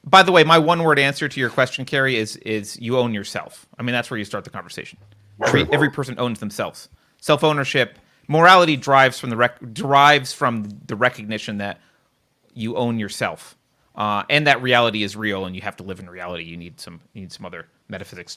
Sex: male